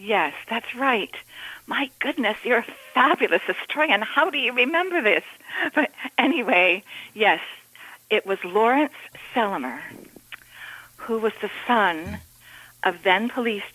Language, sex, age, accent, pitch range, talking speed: English, female, 50-69, American, 170-240 Hz, 120 wpm